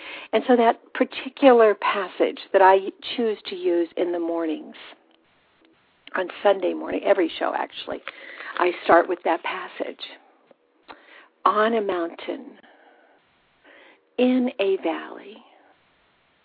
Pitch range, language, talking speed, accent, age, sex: 215-270 Hz, English, 110 wpm, American, 60-79, female